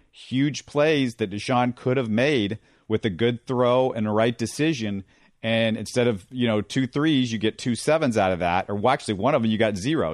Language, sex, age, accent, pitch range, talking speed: English, male, 40-59, American, 105-125 Hz, 225 wpm